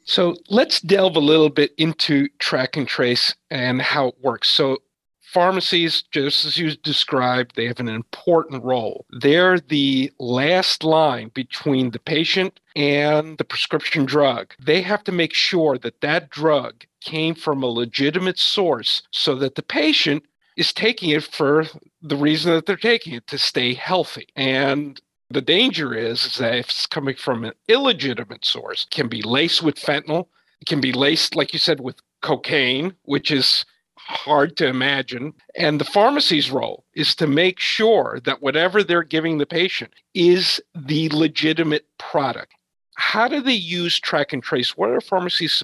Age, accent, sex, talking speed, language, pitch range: 40-59, American, male, 165 wpm, English, 135-170 Hz